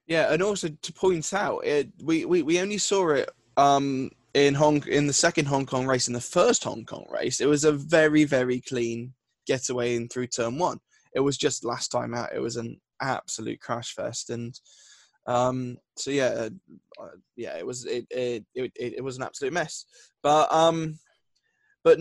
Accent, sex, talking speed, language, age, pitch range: British, male, 195 wpm, English, 10-29, 125-160 Hz